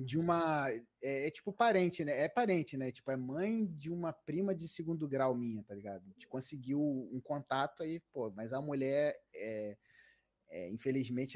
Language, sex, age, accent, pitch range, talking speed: Portuguese, male, 20-39, Brazilian, 130-185 Hz, 185 wpm